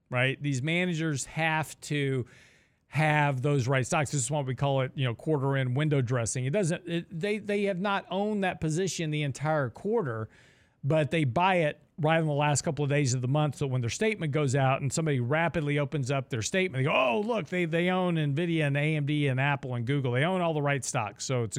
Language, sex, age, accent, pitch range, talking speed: English, male, 40-59, American, 125-160 Hz, 230 wpm